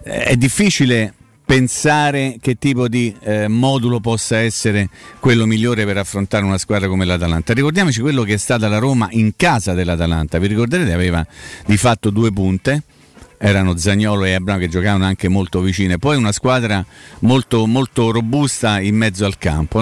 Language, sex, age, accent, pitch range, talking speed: Italian, male, 40-59, native, 105-130 Hz, 165 wpm